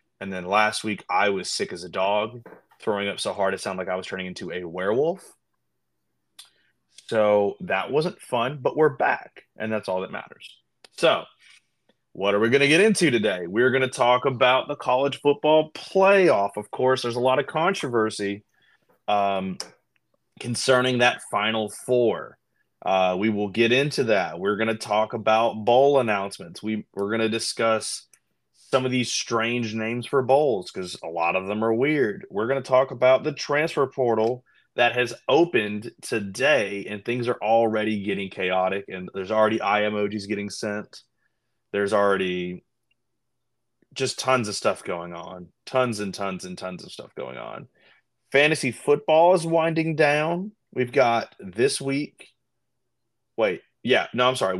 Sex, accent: male, American